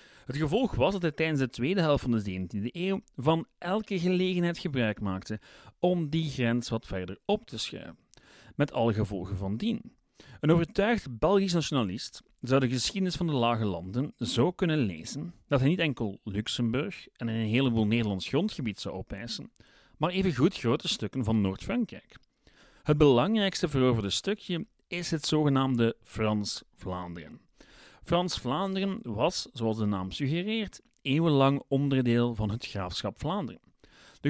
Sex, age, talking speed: male, 40-59, 145 wpm